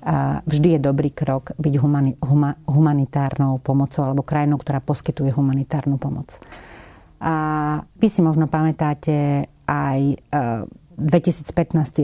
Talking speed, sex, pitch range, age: 100 wpm, female, 150-170 Hz, 40-59